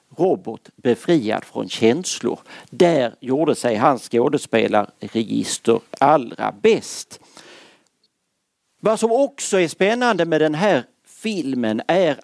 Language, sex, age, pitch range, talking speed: Swedish, male, 50-69, 120-185 Hz, 105 wpm